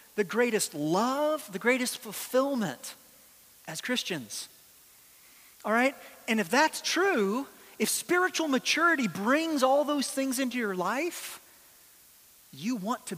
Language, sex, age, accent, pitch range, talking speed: English, male, 30-49, American, 195-270 Hz, 125 wpm